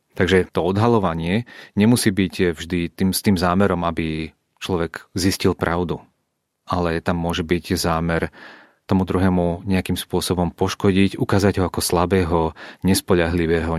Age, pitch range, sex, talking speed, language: 30-49, 85-100 Hz, male, 125 wpm, Czech